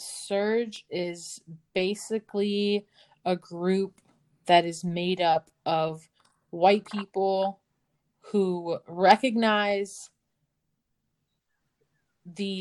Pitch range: 170-205 Hz